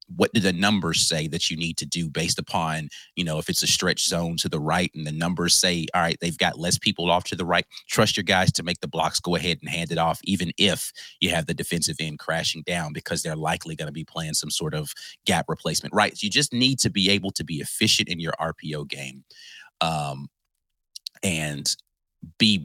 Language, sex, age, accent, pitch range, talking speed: English, male, 30-49, American, 80-100 Hz, 230 wpm